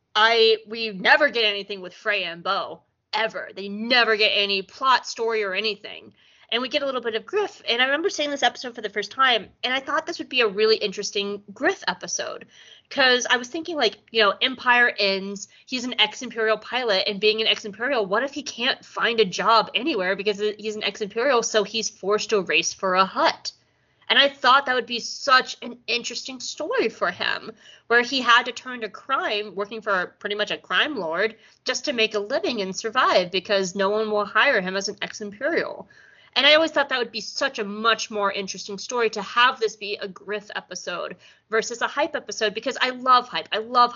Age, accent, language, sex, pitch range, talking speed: 20-39, American, English, female, 205-255 Hz, 215 wpm